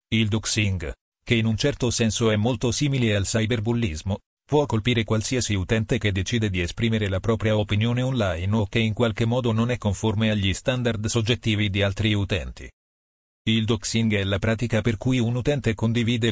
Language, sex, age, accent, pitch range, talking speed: Italian, male, 40-59, native, 105-120 Hz, 175 wpm